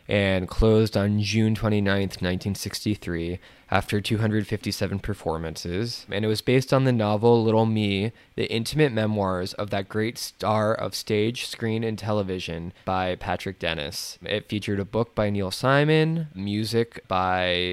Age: 20-39